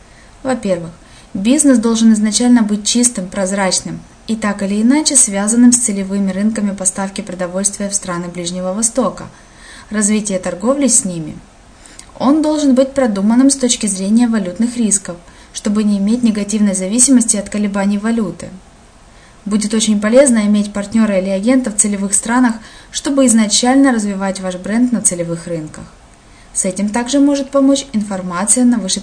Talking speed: 140 wpm